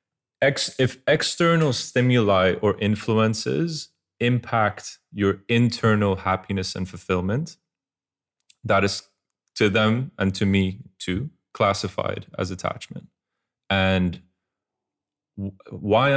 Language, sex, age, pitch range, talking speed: English, male, 30-49, 95-110 Hz, 90 wpm